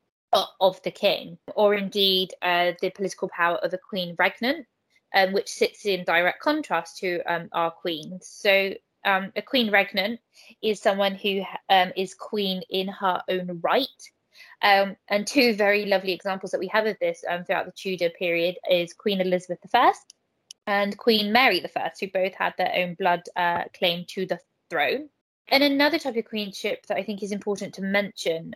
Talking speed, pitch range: 180 wpm, 180-210 Hz